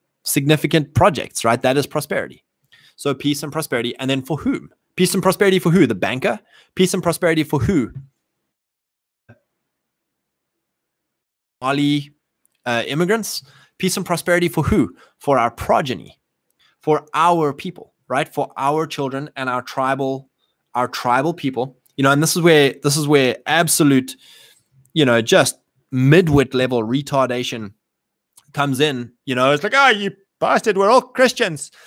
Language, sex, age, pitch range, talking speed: English, male, 20-39, 130-185 Hz, 145 wpm